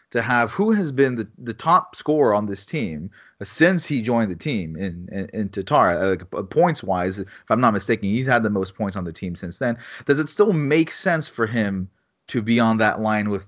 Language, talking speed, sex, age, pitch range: English, 235 wpm, male, 30-49, 105-135 Hz